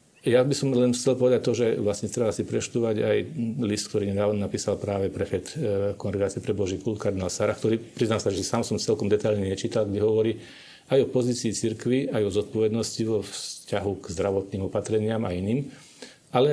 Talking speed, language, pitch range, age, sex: 185 wpm, Slovak, 100-115 Hz, 40-59, male